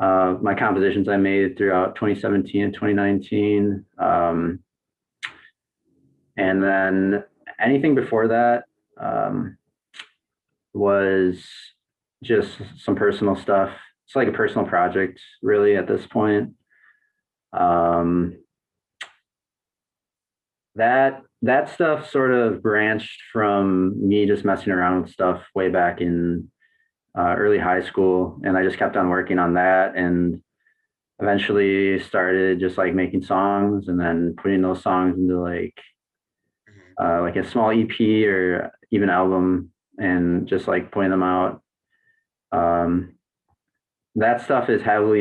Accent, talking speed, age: American, 120 wpm, 30-49